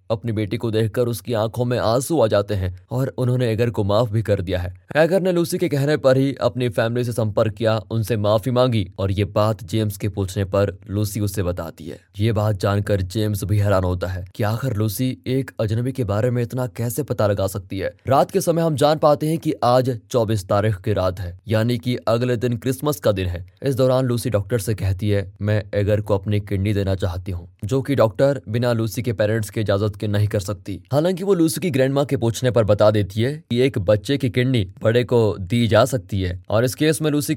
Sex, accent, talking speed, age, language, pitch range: male, native, 235 wpm, 20-39, Hindi, 105-130 Hz